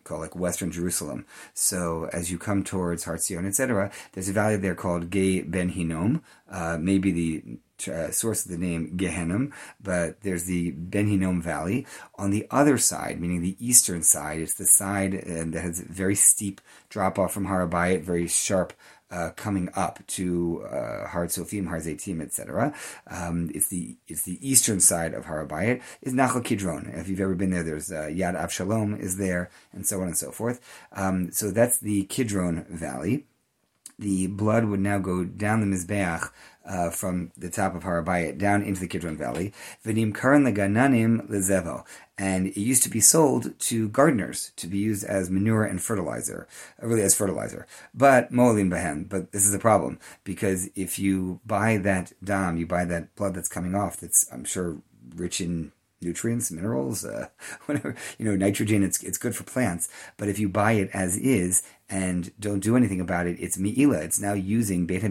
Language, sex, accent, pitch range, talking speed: English, male, American, 85-105 Hz, 180 wpm